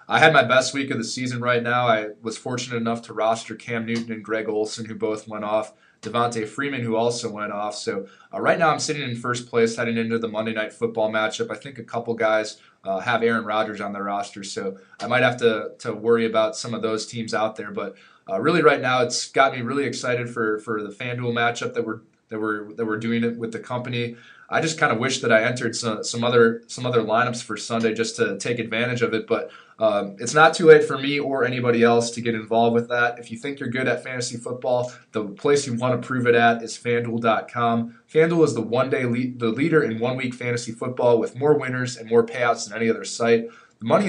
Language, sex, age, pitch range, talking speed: English, male, 20-39, 115-125 Hz, 240 wpm